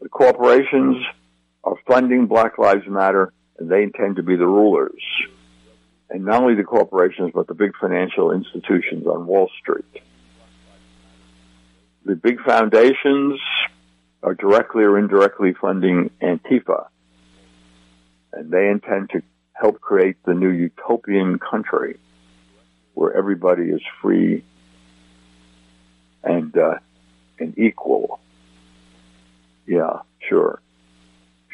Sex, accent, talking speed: male, American, 110 wpm